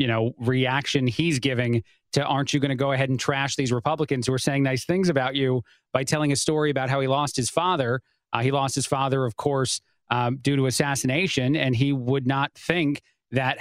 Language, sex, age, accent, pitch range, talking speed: English, male, 30-49, American, 135-165 Hz, 215 wpm